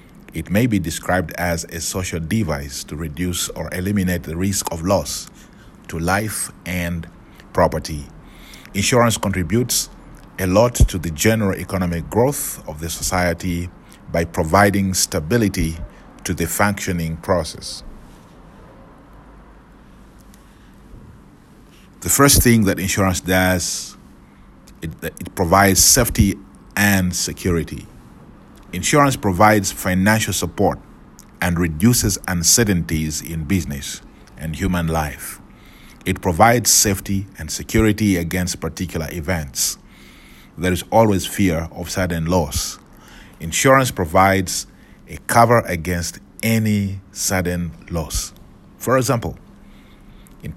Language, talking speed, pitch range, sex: English, 105 wpm, 85-100 Hz, male